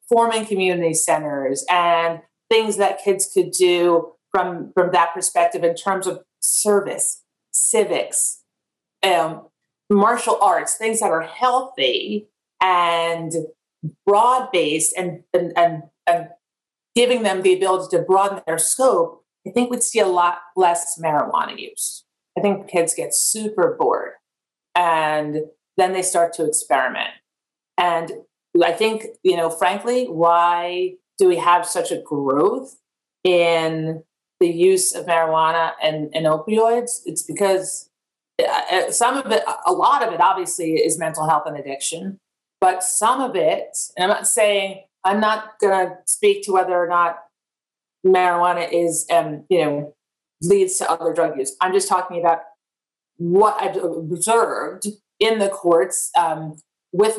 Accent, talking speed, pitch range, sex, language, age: American, 140 wpm, 165-205 Hz, female, English, 40-59